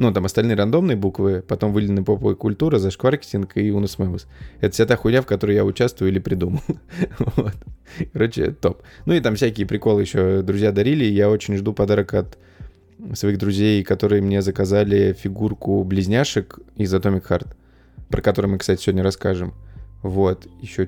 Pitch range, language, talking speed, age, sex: 95-115 Hz, Russian, 160 wpm, 20-39, male